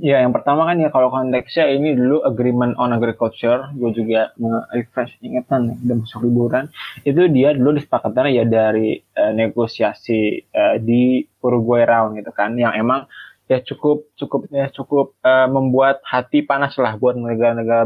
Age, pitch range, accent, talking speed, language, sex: 20-39, 115-130 Hz, native, 160 wpm, Indonesian, male